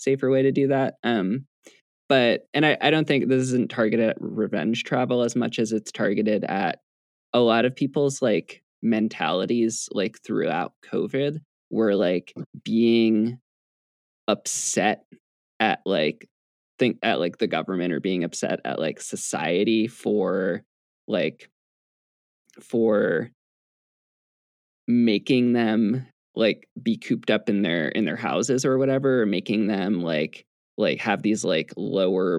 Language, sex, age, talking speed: English, male, 20-39, 135 wpm